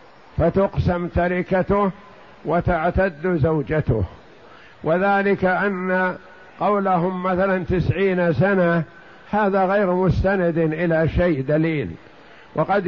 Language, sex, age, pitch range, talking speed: Arabic, male, 60-79, 170-195 Hz, 80 wpm